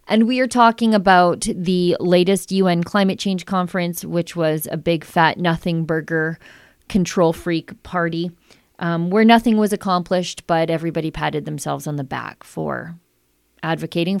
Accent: American